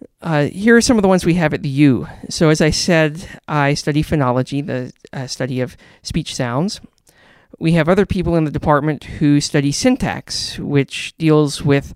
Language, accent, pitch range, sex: English, American, 130-155 Hz, male